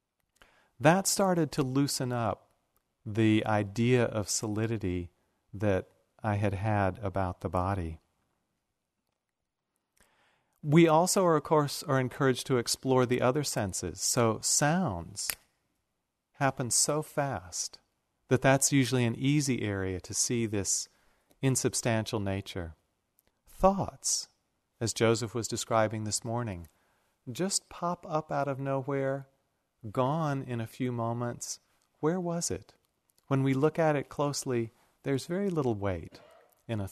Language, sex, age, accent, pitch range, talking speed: English, male, 40-59, American, 105-145 Hz, 125 wpm